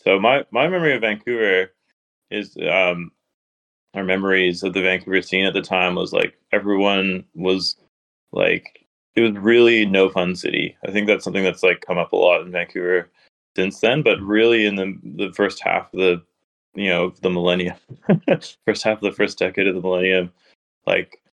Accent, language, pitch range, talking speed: American, English, 90-105 Hz, 180 wpm